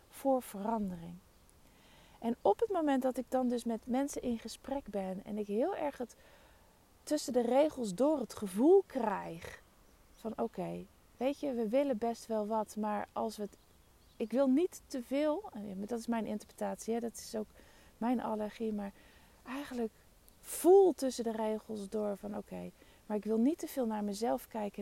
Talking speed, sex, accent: 180 wpm, female, Dutch